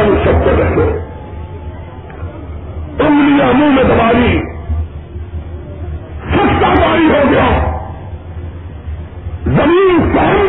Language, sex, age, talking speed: Urdu, female, 50-69, 55 wpm